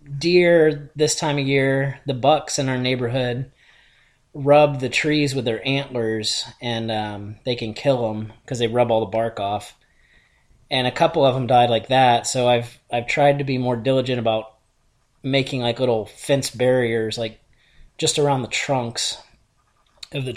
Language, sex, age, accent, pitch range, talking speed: English, male, 30-49, American, 120-145 Hz, 170 wpm